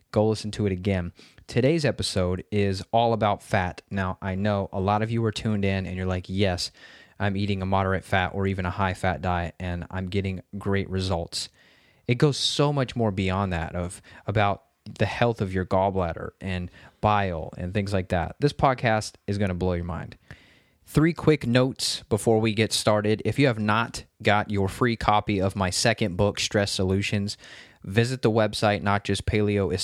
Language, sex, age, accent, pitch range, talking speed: English, male, 20-39, American, 95-115 Hz, 195 wpm